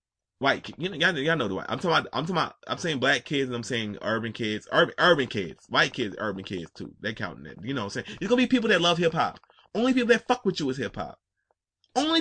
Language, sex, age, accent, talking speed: English, male, 20-39, American, 275 wpm